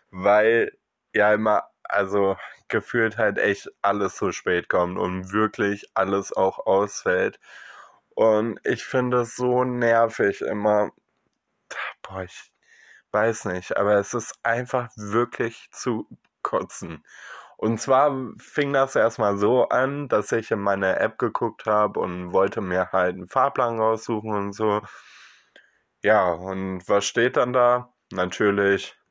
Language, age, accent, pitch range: German, 20-39, German, 95-115 Hz